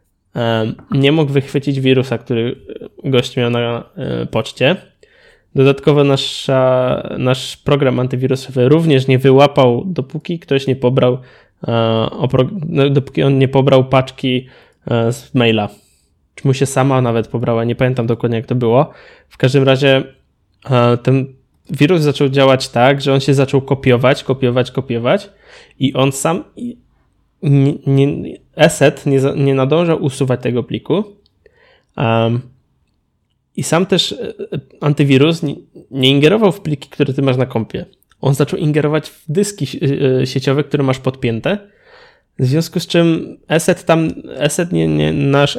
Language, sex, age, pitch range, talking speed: Polish, male, 20-39, 125-150 Hz, 135 wpm